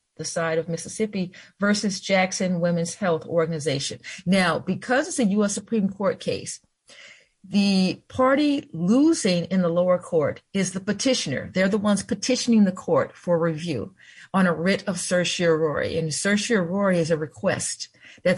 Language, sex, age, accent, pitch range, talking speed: English, female, 40-59, American, 170-225 Hz, 150 wpm